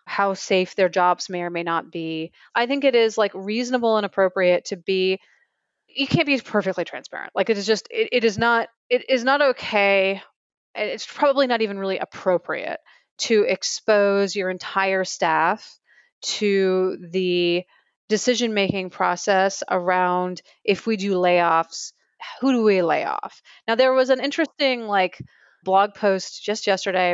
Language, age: English, 30-49